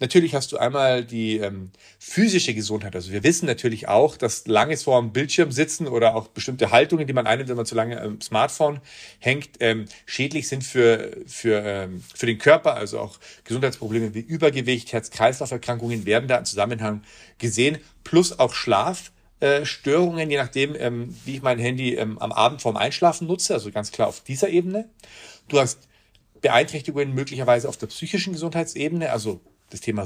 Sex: male